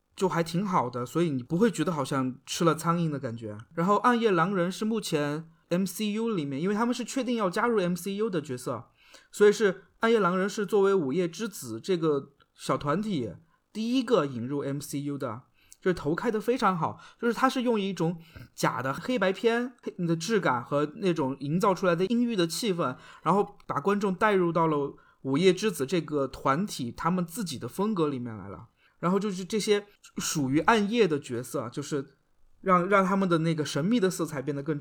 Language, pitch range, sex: Chinese, 145-205 Hz, male